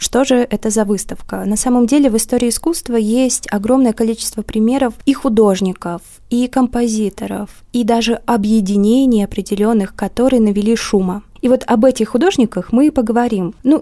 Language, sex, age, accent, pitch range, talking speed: Russian, female, 20-39, native, 210-250 Hz, 150 wpm